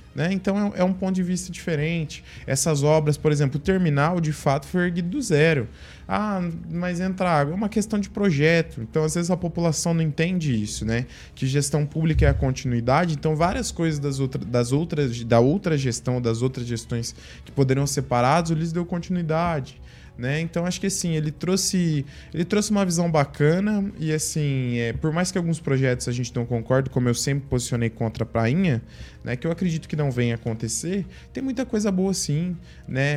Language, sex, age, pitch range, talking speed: Portuguese, male, 20-39, 125-170 Hz, 195 wpm